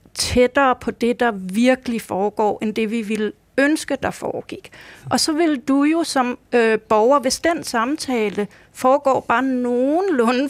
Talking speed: 150 wpm